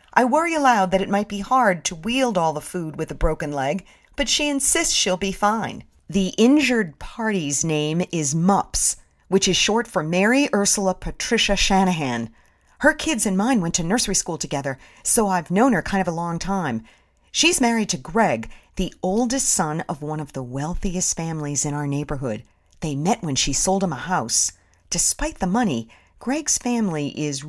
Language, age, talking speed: English, 40-59, 185 wpm